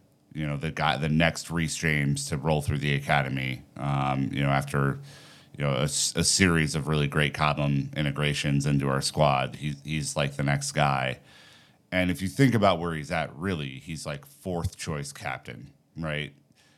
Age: 30-49